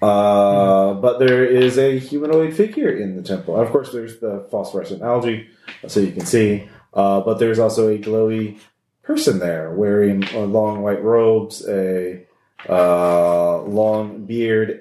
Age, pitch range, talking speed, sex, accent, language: 30-49, 95-125 Hz, 150 wpm, male, American, English